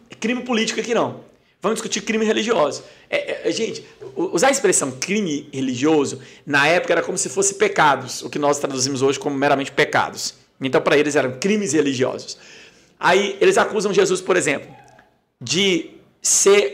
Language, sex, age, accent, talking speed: Portuguese, male, 50-69, Brazilian, 160 wpm